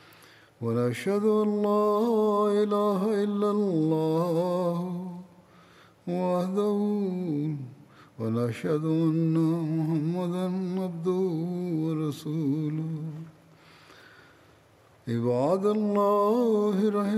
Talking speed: 35 wpm